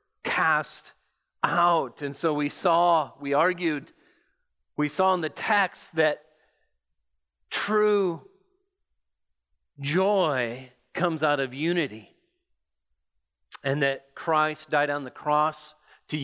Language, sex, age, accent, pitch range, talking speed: English, male, 40-59, American, 130-170 Hz, 105 wpm